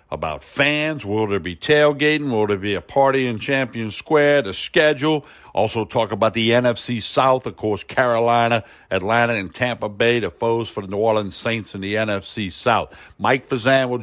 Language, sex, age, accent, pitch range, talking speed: English, male, 60-79, American, 105-135 Hz, 185 wpm